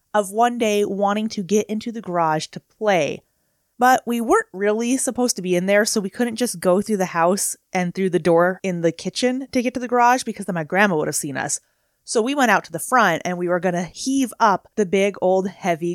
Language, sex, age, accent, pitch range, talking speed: English, female, 30-49, American, 175-235 Hz, 245 wpm